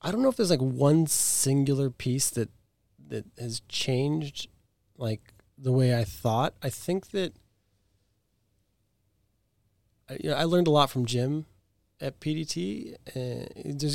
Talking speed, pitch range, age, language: 145 wpm, 105-130 Hz, 30-49, English